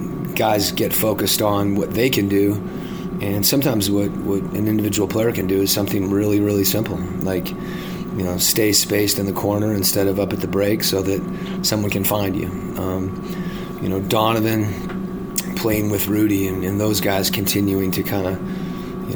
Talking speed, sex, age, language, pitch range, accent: 180 wpm, male, 30-49, English, 100-110 Hz, American